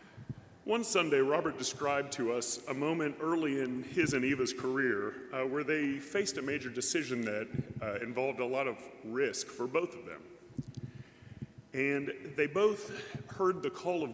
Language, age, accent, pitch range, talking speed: English, 40-59, American, 120-150 Hz, 165 wpm